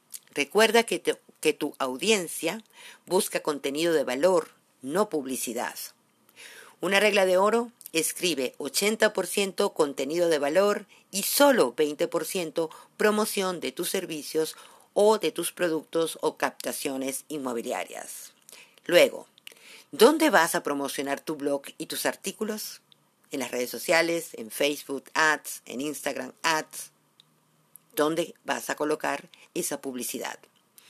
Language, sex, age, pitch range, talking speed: Spanish, female, 50-69, 150-210 Hz, 115 wpm